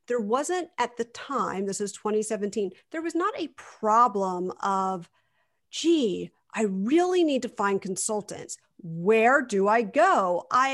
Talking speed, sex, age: 145 wpm, female, 50-69